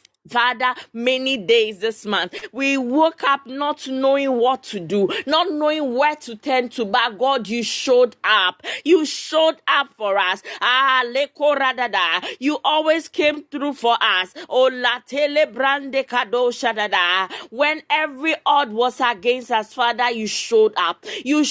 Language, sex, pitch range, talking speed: English, female, 225-280 Hz, 130 wpm